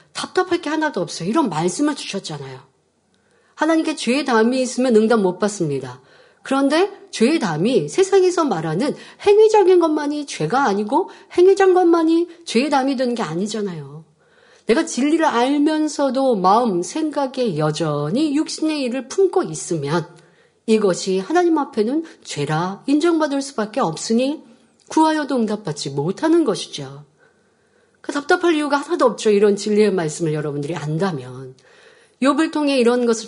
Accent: native